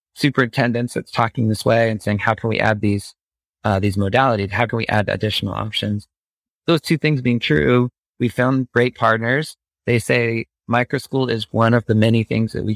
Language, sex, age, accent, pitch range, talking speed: English, male, 30-49, American, 100-120 Hz, 195 wpm